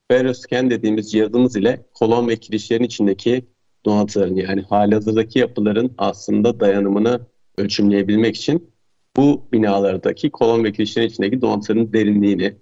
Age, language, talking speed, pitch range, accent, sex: 40-59, Turkish, 115 wpm, 100-120 Hz, native, male